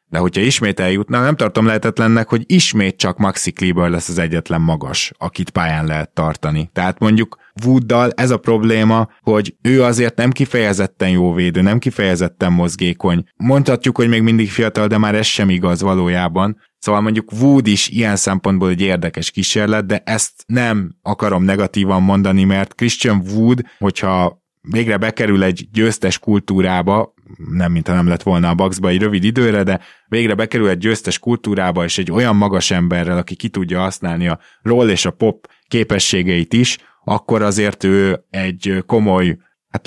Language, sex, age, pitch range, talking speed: Hungarian, male, 20-39, 90-110 Hz, 165 wpm